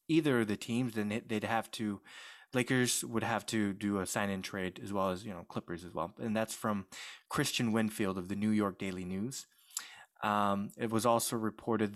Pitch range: 100-120 Hz